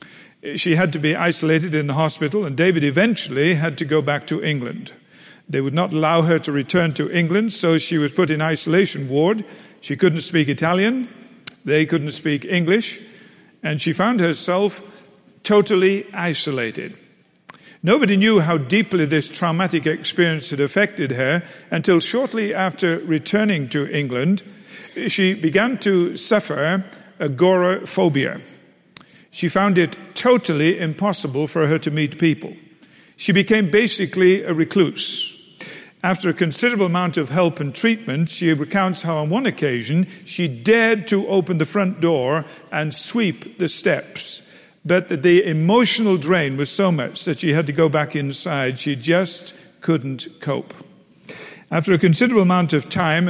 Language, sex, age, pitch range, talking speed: English, male, 50-69, 155-195 Hz, 150 wpm